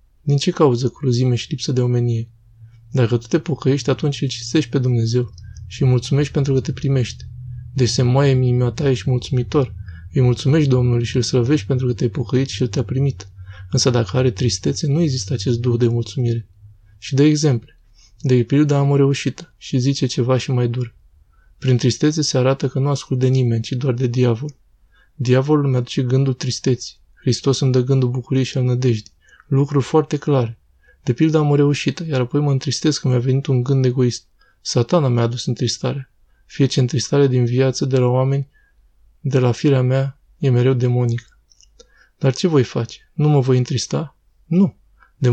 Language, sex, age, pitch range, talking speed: Romanian, male, 20-39, 120-140 Hz, 180 wpm